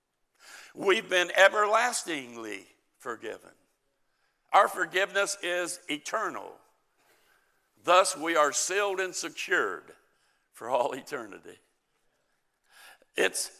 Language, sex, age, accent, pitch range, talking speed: English, male, 60-79, American, 145-205 Hz, 80 wpm